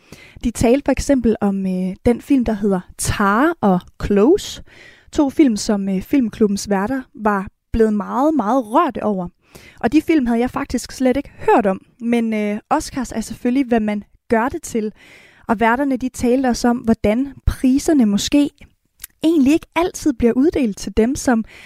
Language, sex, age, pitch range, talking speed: Danish, female, 20-39, 215-270 Hz, 170 wpm